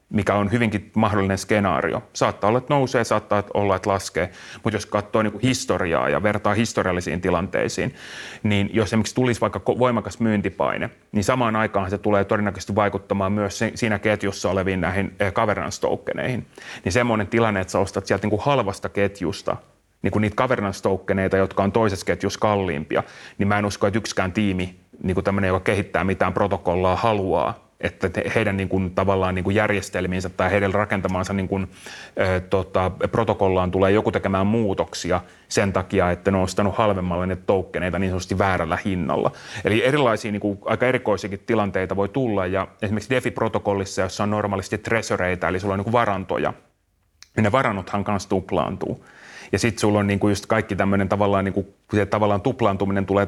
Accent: native